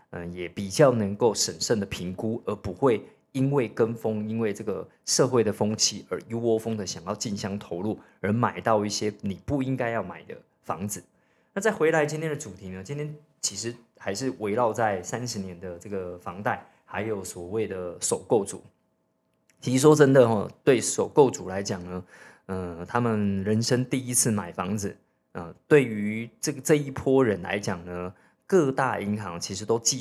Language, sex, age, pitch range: Chinese, male, 20-39, 95-120 Hz